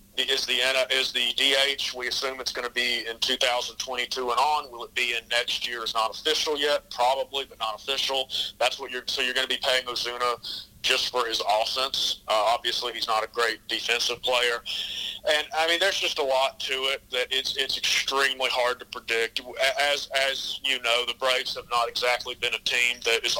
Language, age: English, 40-59